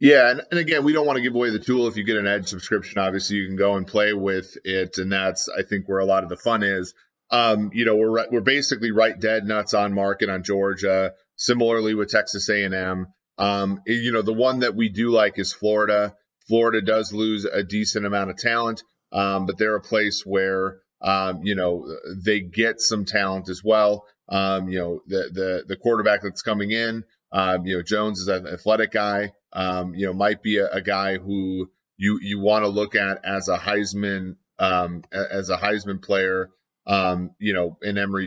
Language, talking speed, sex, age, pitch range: English, 210 wpm, male, 30-49, 95-110 Hz